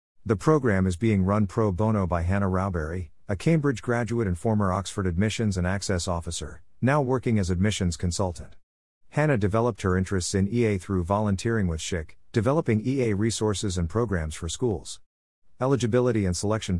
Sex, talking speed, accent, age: male, 160 wpm, American, 50-69